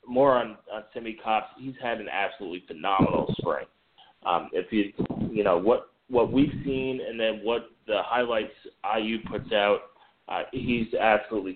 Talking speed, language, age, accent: 160 wpm, English, 30-49, American